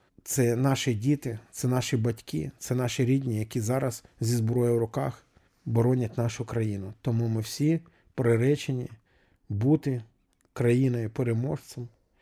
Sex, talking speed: male, 120 wpm